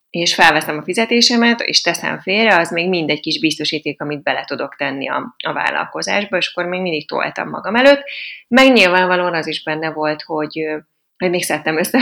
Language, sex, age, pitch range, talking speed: Hungarian, female, 30-49, 160-205 Hz, 185 wpm